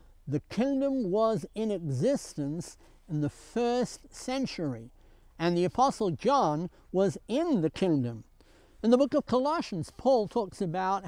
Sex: male